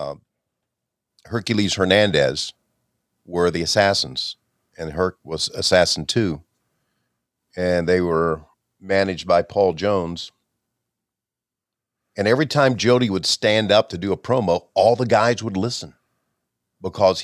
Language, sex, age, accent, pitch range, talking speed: English, male, 50-69, American, 95-120 Hz, 120 wpm